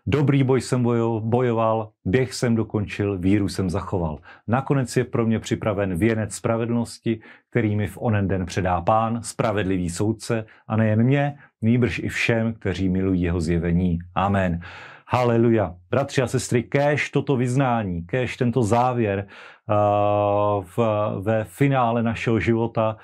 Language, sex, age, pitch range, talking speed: Slovak, male, 40-59, 105-120 Hz, 140 wpm